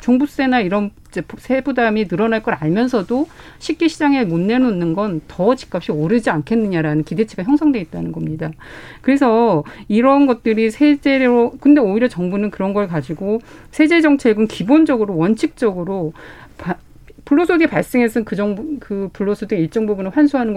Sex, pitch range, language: female, 180-250 Hz, Korean